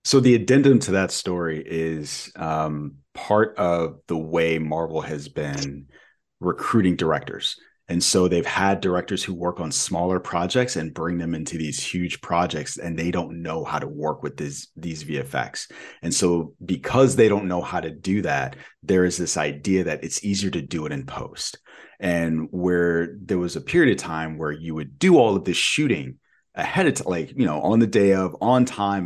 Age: 30-49